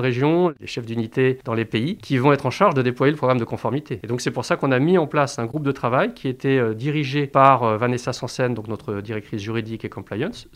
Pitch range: 115-140 Hz